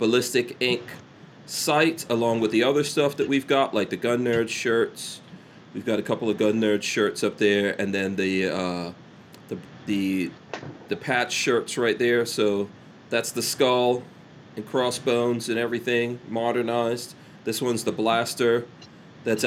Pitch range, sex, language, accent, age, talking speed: 110-140 Hz, male, English, American, 40-59, 155 wpm